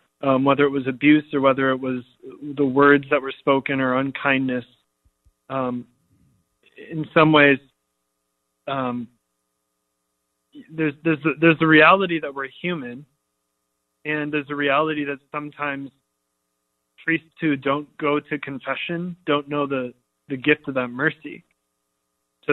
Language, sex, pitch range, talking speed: English, male, 125-145 Hz, 135 wpm